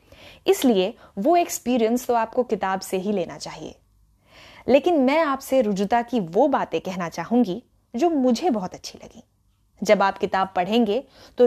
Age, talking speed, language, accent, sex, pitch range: 20-39, 150 wpm, Hindi, native, female, 185-245 Hz